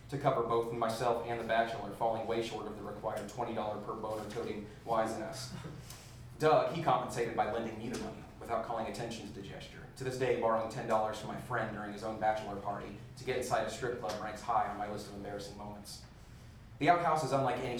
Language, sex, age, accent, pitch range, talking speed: English, male, 30-49, American, 105-120 Hz, 215 wpm